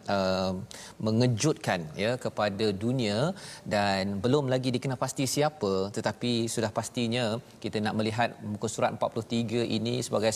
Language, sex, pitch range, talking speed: Malayalam, male, 105-125 Hz, 115 wpm